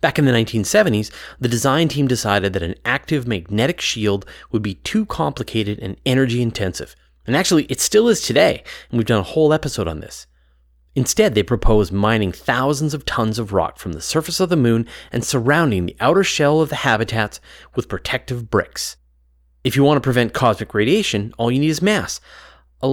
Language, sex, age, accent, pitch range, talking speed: English, male, 30-49, American, 95-140 Hz, 190 wpm